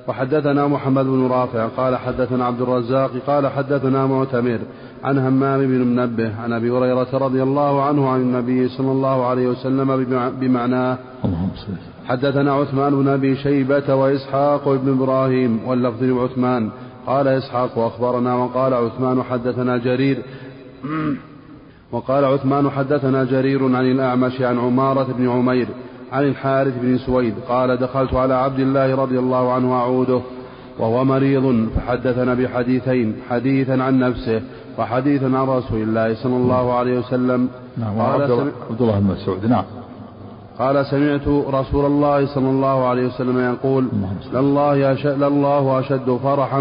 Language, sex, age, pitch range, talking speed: Arabic, male, 30-49, 125-135 Hz, 125 wpm